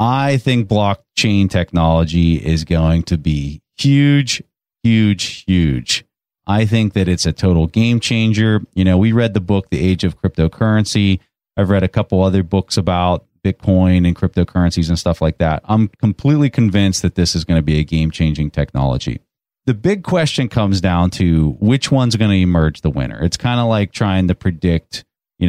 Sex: male